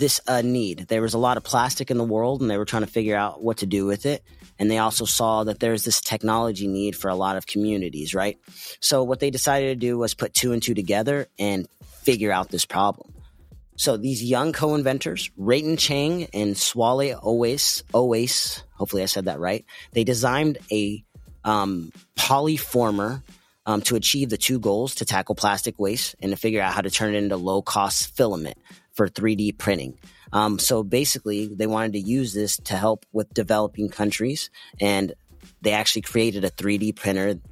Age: 30-49